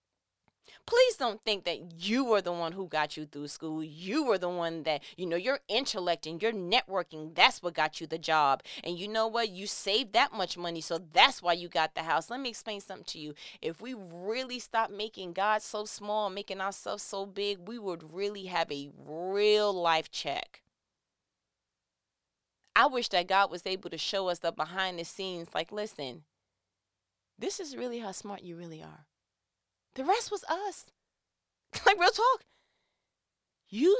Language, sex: English, female